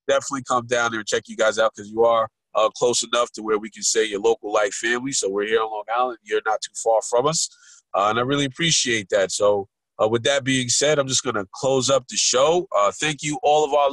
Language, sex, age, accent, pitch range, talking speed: English, male, 30-49, American, 115-140 Hz, 265 wpm